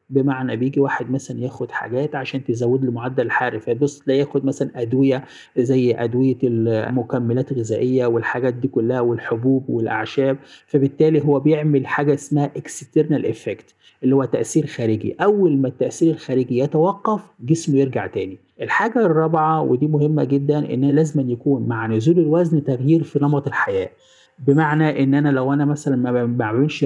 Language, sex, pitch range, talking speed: Arabic, male, 125-150 Hz, 145 wpm